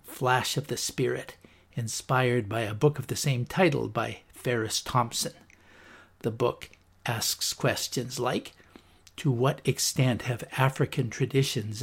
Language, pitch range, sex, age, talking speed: English, 110-135 Hz, male, 60-79, 130 wpm